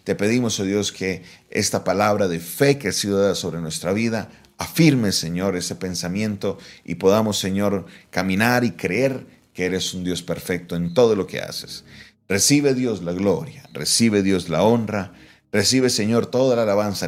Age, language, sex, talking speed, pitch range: 40-59, Spanish, male, 170 wpm, 85-120 Hz